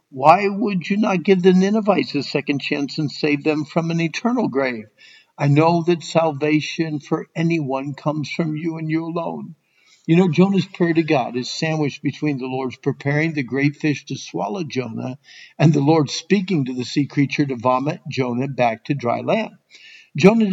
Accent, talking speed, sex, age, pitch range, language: American, 185 wpm, male, 60-79, 140-185 Hz, English